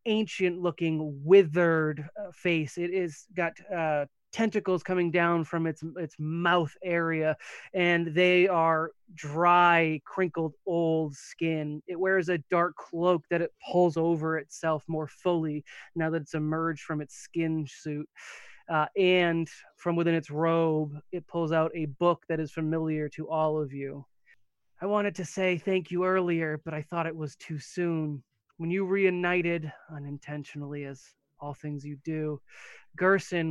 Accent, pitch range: American, 150-175 Hz